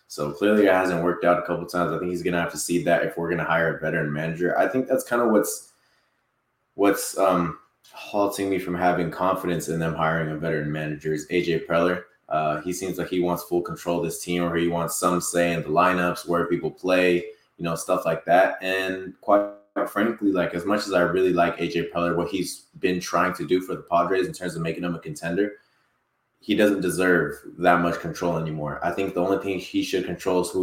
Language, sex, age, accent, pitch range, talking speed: English, male, 20-39, American, 85-100 Hz, 235 wpm